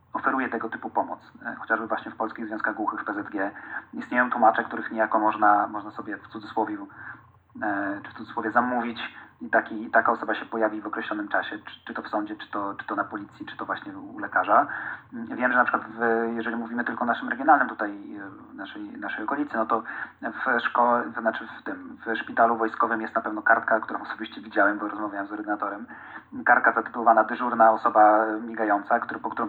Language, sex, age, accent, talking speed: Polish, male, 30-49, native, 195 wpm